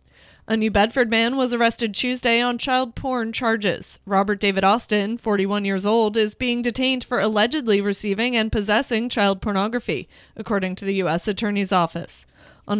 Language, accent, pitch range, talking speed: English, American, 200-245 Hz, 160 wpm